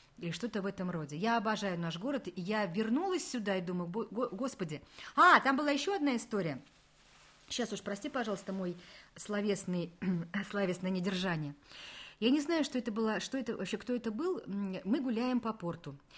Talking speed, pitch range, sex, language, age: 170 wpm, 180-250 Hz, female, Russian, 40-59